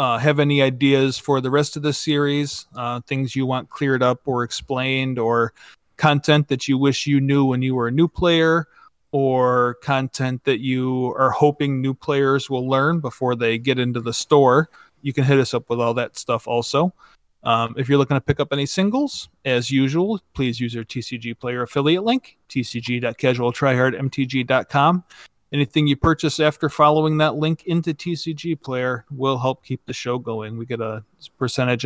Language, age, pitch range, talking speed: English, 30-49, 125-150 Hz, 180 wpm